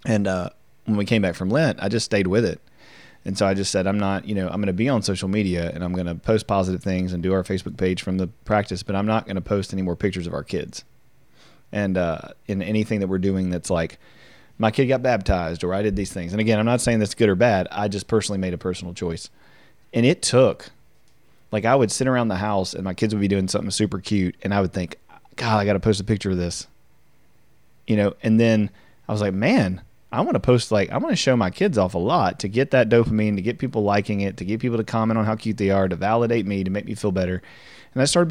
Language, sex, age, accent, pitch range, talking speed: English, male, 30-49, American, 95-115 Hz, 275 wpm